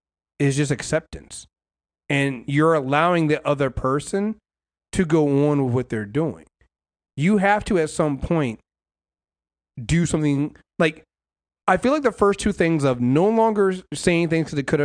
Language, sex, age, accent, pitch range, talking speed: English, male, 30-49, American, 130-180 Hz, 160 wpm